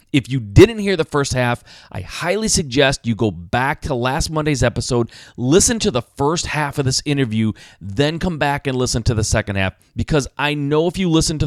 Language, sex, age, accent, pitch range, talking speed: English, male, 30-49, American, 105-140 Hz, 215 wpm